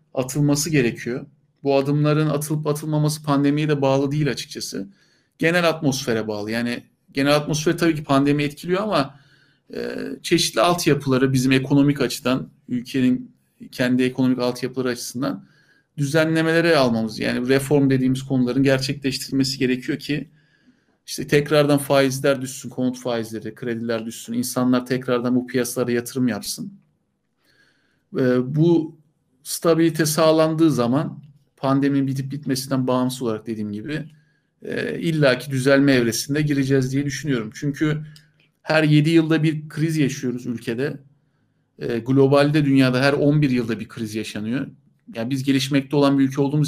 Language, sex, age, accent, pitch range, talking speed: Turkish, male, 50-69, native, 125-150 Hz, 125 wpm